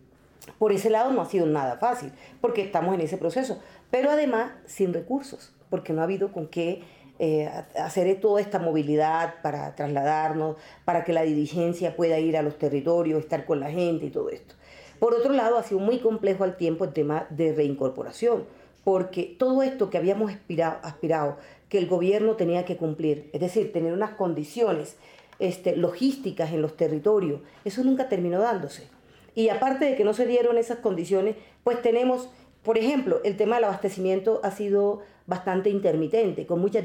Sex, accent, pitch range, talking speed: female, American, 165-215 Hz, 175 wpm